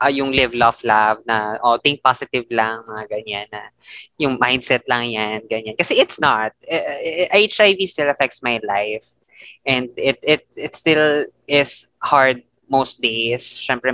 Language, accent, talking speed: Filipino, native, 185 wpm